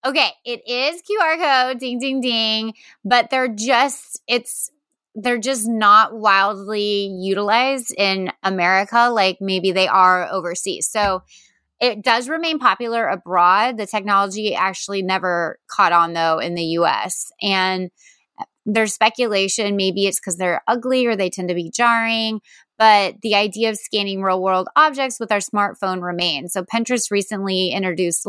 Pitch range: 185-240 Hz